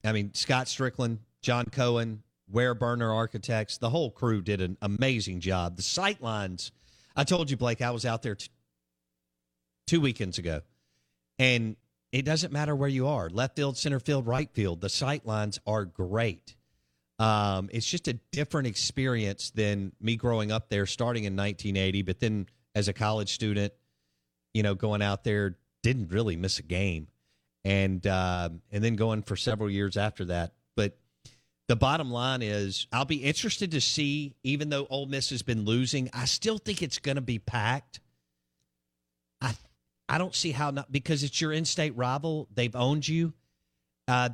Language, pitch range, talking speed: English, 95-140 Hz, 175 wpm